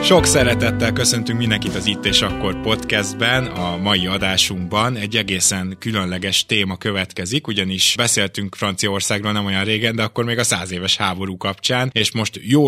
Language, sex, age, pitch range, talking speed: Hungarian, male, 20-39, 95-110 Hz, 160 wpm